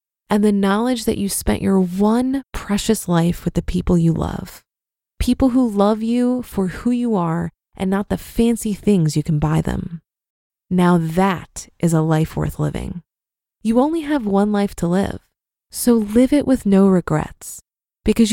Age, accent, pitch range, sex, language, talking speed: 20-39, American, 170-235 Hz, female, English, 175 wpm